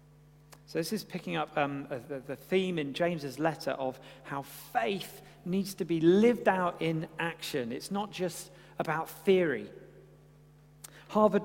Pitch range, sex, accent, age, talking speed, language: 155-205 Hz, male, British, 40-59, 145 wpm, English